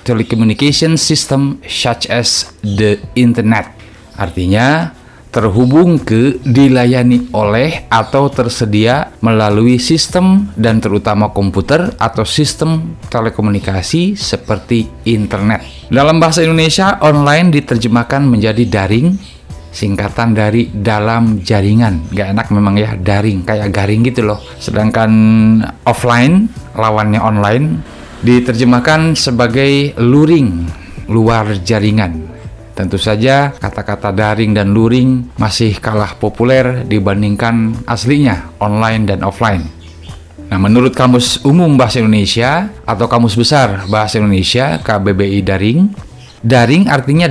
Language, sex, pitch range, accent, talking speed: Indonesian, male, 105-130 Hz, native, 105 wpm